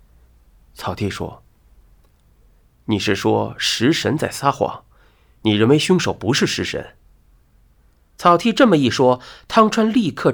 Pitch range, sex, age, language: 100-135 Hz, male, 30-49, Chinese